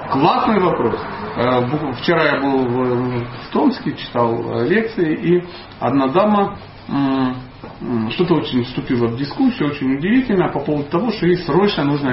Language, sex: Russian, male